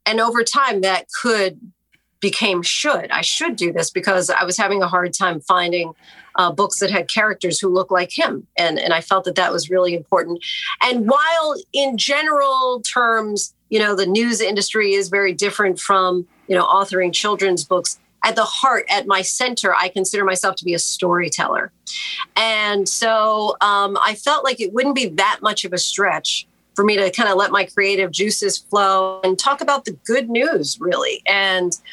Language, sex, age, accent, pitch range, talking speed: English, female, 40-59, American, 185-225 Hz, 190 wpm